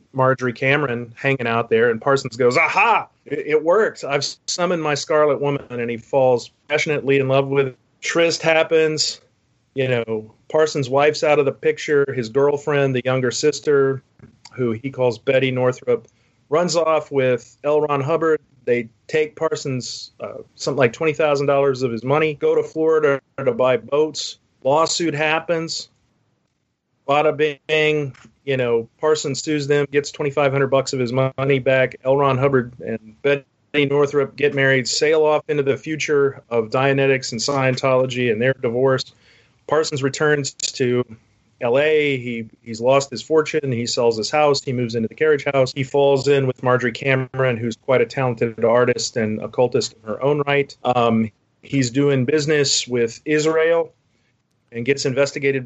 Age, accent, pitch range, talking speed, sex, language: 30-49, American, 125-150 Hz, 160 wpm, male, English